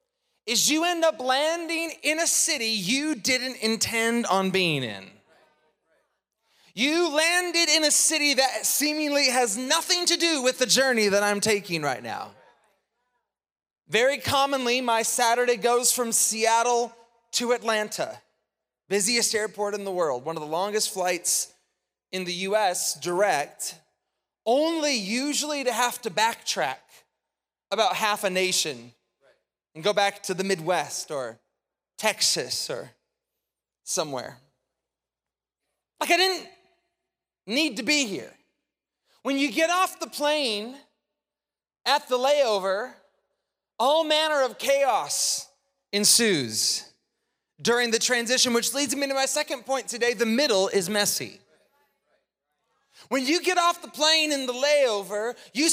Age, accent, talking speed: 30-49, American, 130 wpm